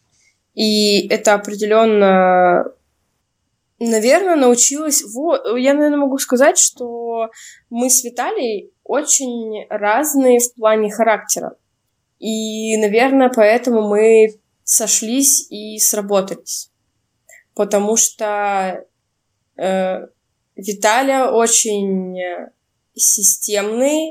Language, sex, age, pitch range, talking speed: Russian, female, 20-39, 200-240 Hz, 80 wpm